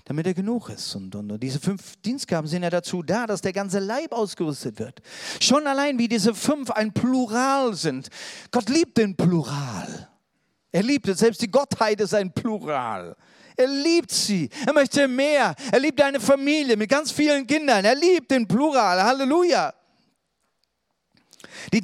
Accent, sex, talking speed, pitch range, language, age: German, male, 170 wpm, 210-275 Hz, German, 40-59